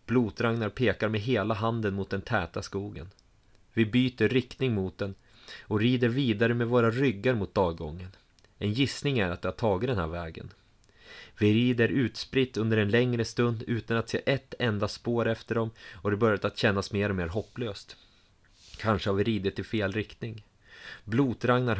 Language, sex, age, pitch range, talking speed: Swedish, male, 30-49, 100-120 Hz, 175 wpm